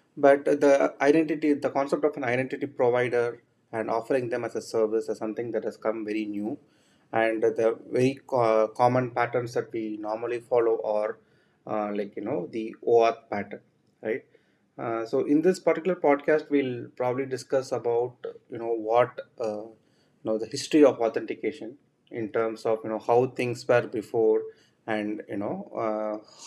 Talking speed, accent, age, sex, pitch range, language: 165 wpm, Indian, 30-49, male, 110-140 Hz, English